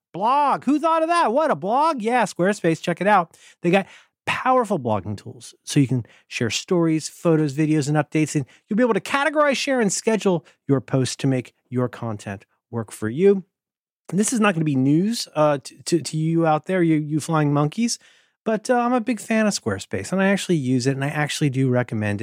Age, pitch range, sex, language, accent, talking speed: 40-59, 125-185 Hz, male, English, American, 220 wpm